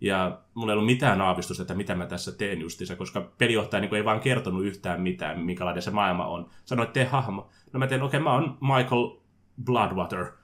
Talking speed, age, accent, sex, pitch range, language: 200 wpm, 30-49, native, male, 90-135 Hz, Finnish